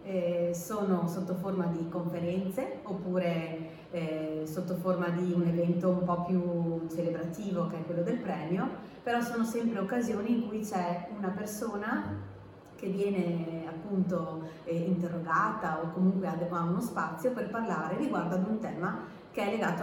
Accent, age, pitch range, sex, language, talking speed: native, 30-49, 170-200 Hz, female, Italian, 150 wpm